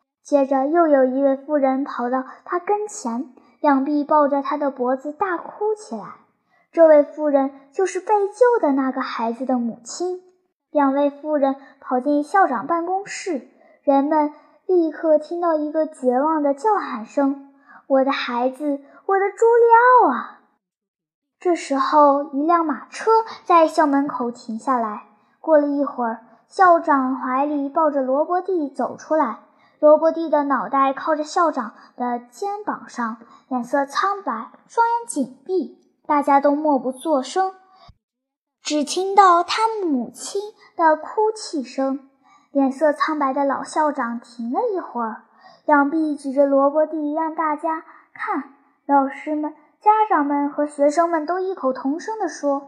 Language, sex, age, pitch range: Chinese, male, 10-29, 270-340 Hz